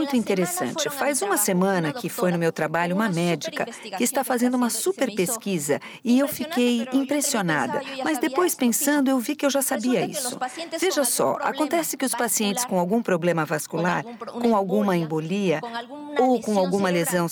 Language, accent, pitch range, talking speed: English, Brazilian, 190-265 Hz, 170 wpm